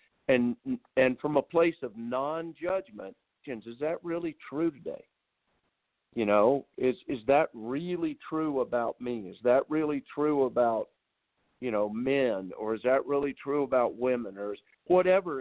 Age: 50-69